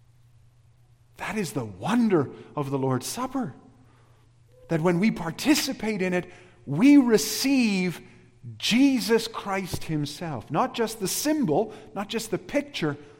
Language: English